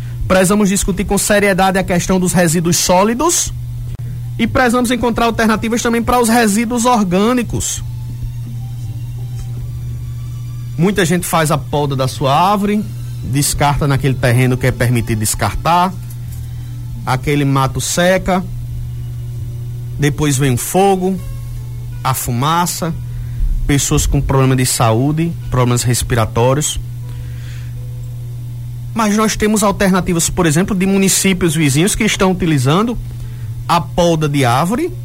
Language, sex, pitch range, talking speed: Portuguese, male, 120-185 Hz, 110 wpm